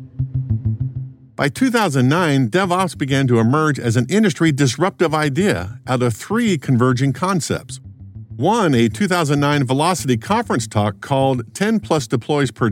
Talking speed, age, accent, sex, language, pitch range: 125 wpm, 50-69, American, male, English, 120-170 Hz